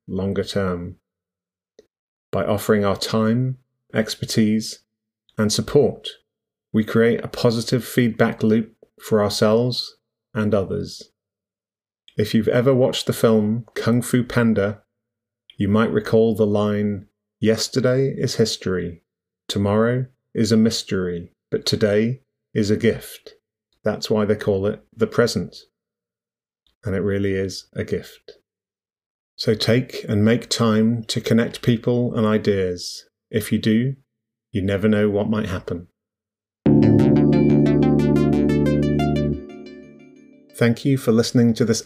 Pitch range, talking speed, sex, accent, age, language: 105-120 Hz, 120 wpm, male, British, 30-49, English